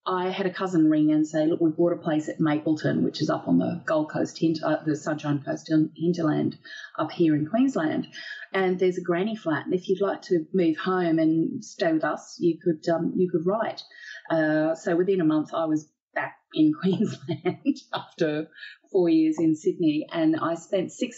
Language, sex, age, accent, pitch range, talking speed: English, female, 30-49, Australian, 155-190 Hz, 200 wpm